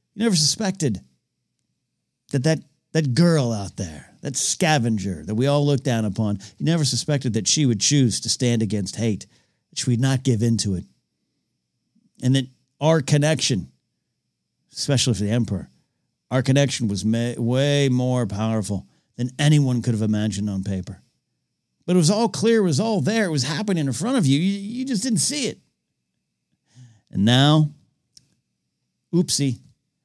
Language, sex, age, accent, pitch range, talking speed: English, male, 50-69, American, 110-150 Hz, 165 wpm